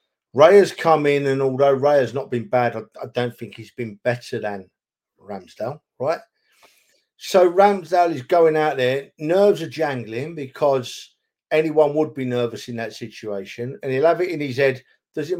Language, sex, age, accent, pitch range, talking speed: English, male, 50-69, British, 125-170 Hz, 180 wpm